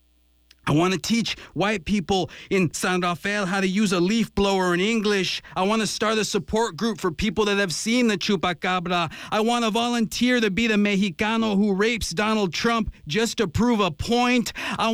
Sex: male